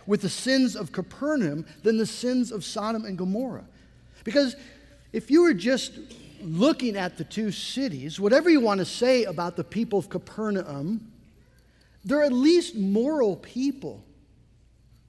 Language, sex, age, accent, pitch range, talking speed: English, male, 50-69, American, 180-260 Hz, 145 wpm